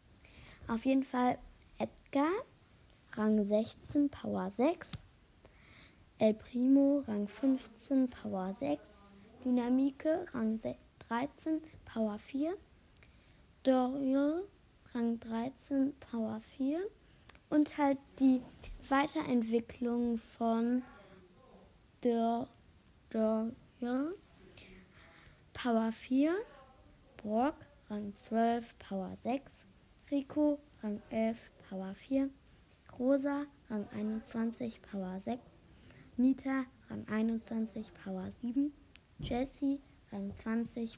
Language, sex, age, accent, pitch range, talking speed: German, female, 20-39, German, 220-275 Hz, 80 wpm